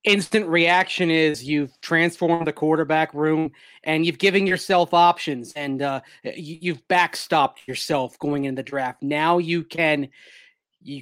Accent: American